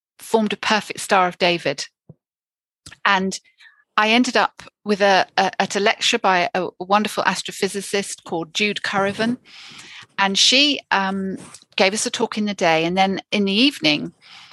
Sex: female